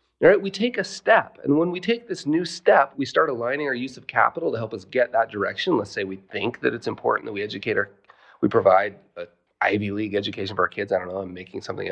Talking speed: 255 wpm